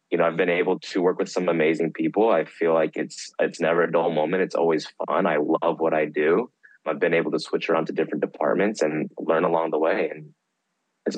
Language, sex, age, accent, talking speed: English, male, 20-39, American, 235 wpm